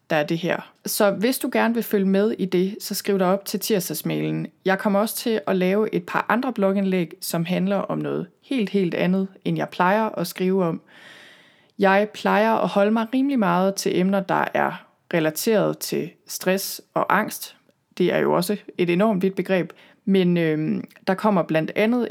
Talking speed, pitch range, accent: 195 wpm, 170-205 Hz, native